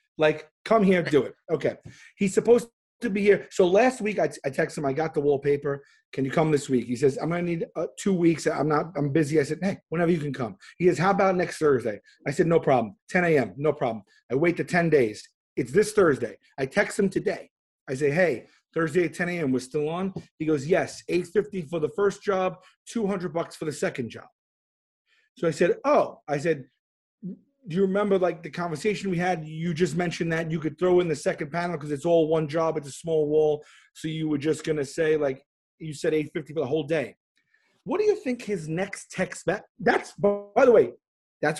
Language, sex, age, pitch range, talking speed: English, male, 30-49, 155-200 Hz, 230 wpm